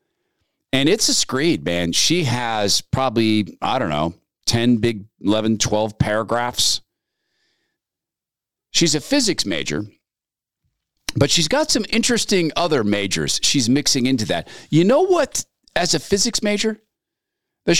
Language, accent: English, American